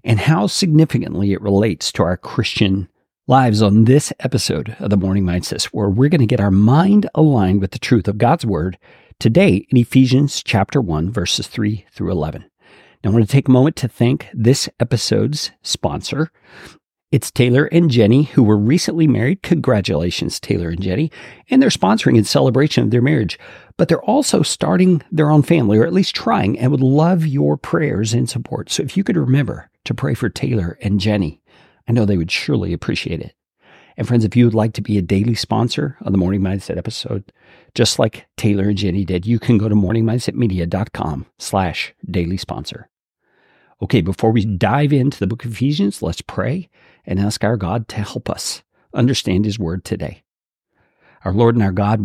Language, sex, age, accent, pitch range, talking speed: English, male, 50-69, American, 100-135 Hz, 190 wpm